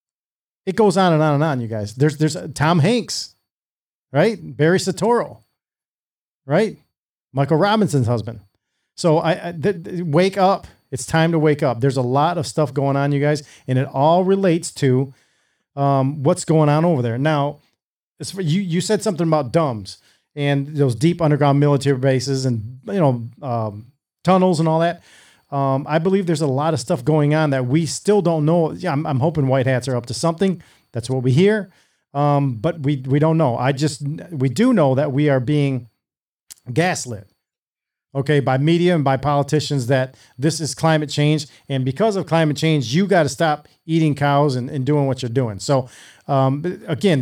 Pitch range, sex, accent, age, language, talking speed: 135-165 Hz, male, American, 40-59, English, 190 wpm